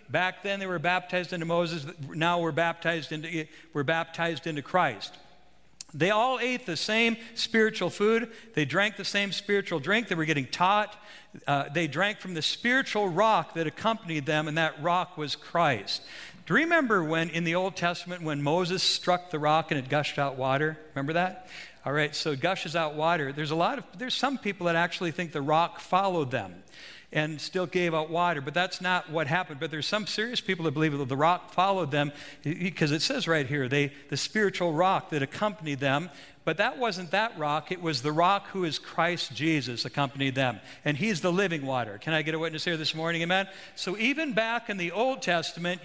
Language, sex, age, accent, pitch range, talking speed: English, male, 60-79, American, 155-195 Hz, 205 wpm